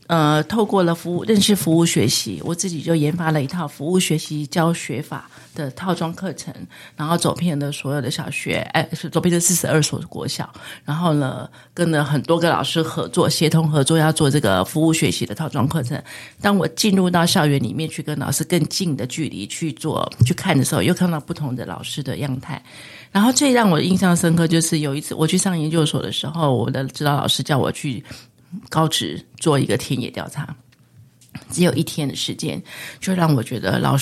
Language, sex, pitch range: Chinese, female, 140-170 Hz